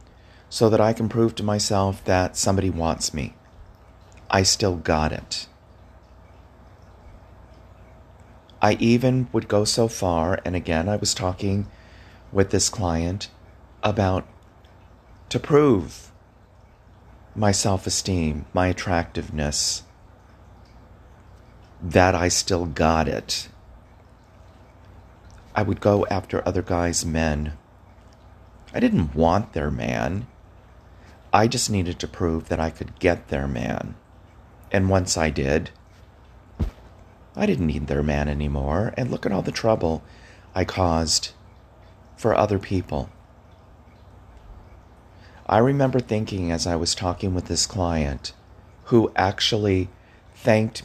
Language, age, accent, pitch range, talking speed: English, 40-59, American, 85-105 Hz, 115 wpm